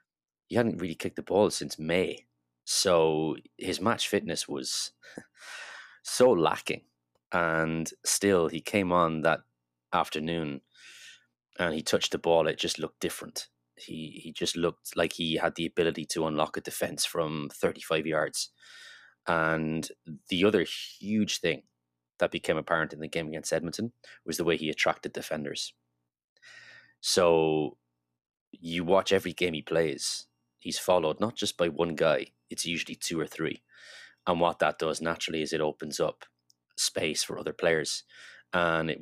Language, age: English, 20-39